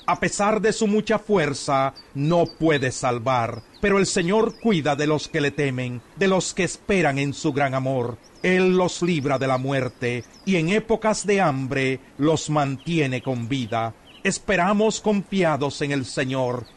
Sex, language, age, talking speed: male, Spanish, 40-59, 165 wpm